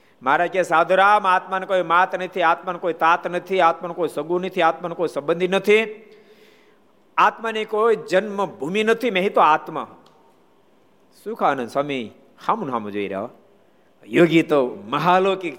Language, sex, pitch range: Gujarati, male, 155-210 Hz